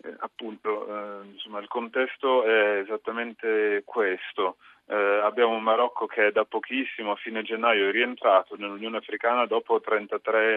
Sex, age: male, 30-49